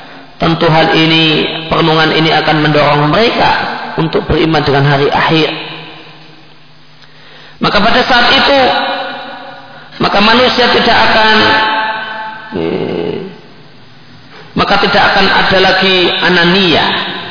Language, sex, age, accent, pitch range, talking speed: Indonesian, male, 40-59, native, 150-220 Hz, 95 wpm